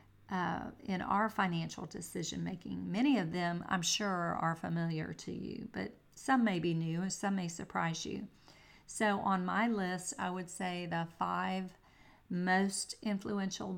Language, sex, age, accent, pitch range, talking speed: English, female, 40-59, American, 170-200 Hz, 150 wpm